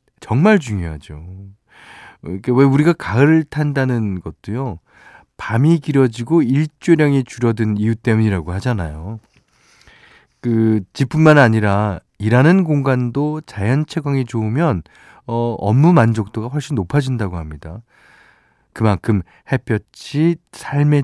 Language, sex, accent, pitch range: Korean, male, native, 95-145 Hz